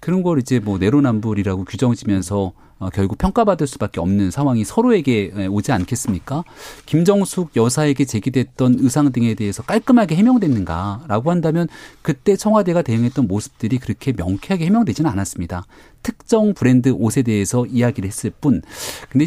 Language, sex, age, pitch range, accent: Korean, male, 40-59, 110-175 Hz, native